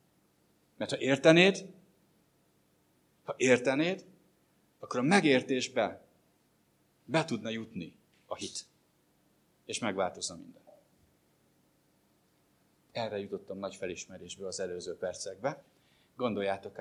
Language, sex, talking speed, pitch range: English, male, 85 wpm, 100-135 Hz